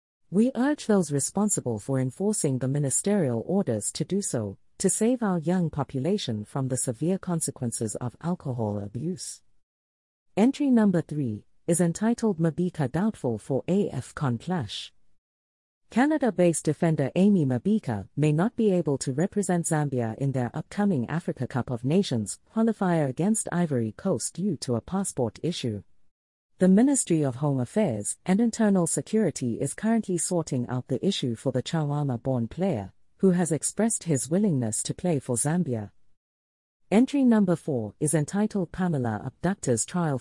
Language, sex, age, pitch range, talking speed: English, female, 40-59, 120-190 Hz, 145 wpm